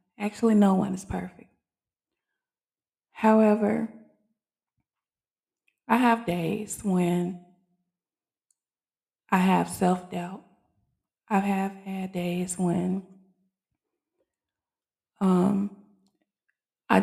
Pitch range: 180-205 Hz